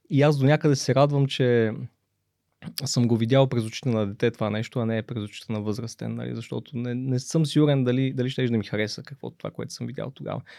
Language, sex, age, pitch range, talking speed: Bulgarian, male, 20-39, 115-140 Hz, 220 wpm